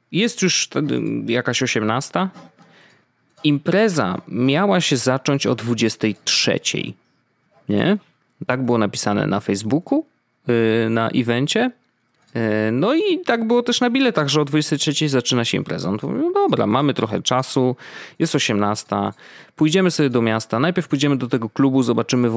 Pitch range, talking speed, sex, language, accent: 110-140 Hz, 130 wpm, male, Polish, native